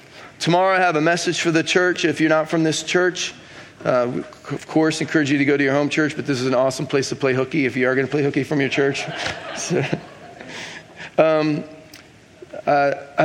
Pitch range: 135-160 Hz